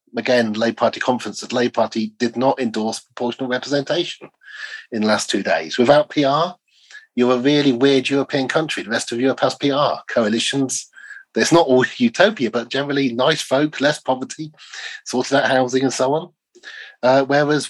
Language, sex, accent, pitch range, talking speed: English, male, British, 120-165 Hz, 175 wpm